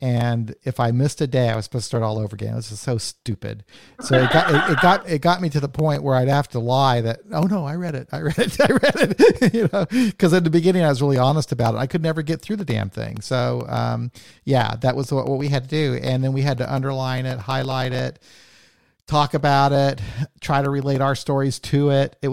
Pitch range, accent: 120-150 Hz, American